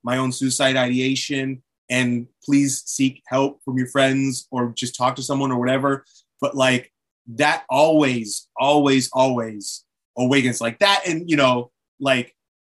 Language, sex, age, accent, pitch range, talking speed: English, male, 30-49, American, 130-150 Hz, 145 wpm